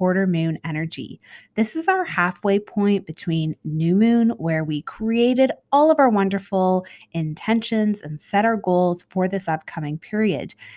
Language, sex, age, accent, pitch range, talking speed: English, female, 20-39, American, 170-225 Hz, 150 wpm